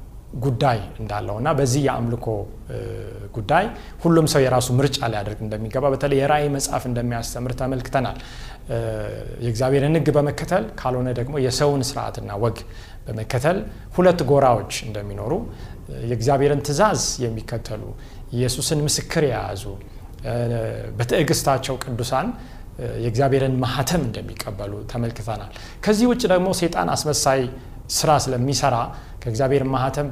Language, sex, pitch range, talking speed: Amharic, male, 115-145 Hz, 100 wpm